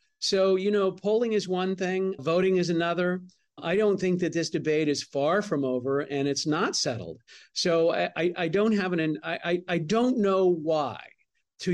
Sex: male